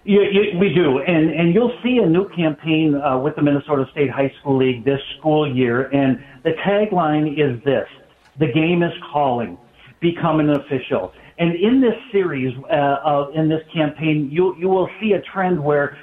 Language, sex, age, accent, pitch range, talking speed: English, male, 60-79, American, 140-175 Hz, 185 wpm